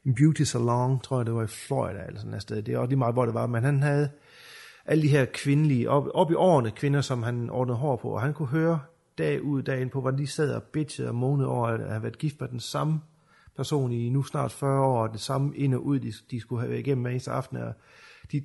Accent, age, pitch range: native, 30-49, 120-145 Hz